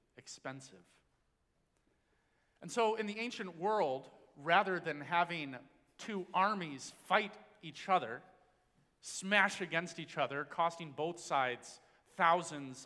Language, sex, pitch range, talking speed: English, male, 135-180 Hz, 105 wpm